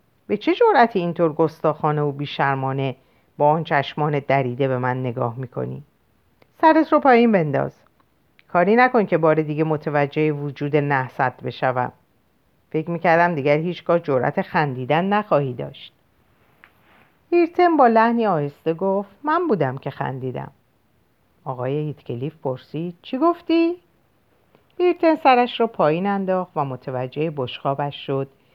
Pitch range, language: 135-200 Hz, Persian